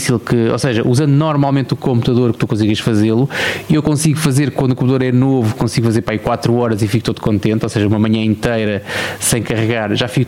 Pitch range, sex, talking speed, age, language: 110-140 Hz, male, 220 wpm, 20-39, Portuguese